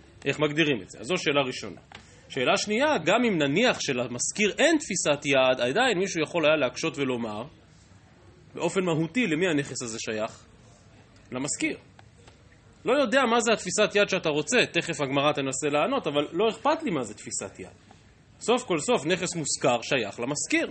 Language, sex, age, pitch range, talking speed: Hebrew, male, 30-49, 125-200 Hz, 165 wpm